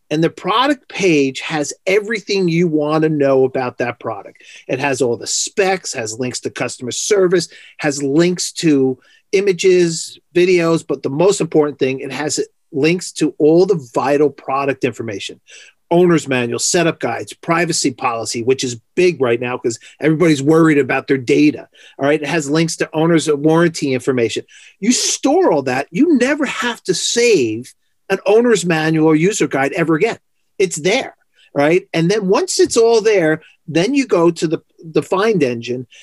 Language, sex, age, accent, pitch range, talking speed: English, male, 40-59, American, 135-185 Hz, 170 wpm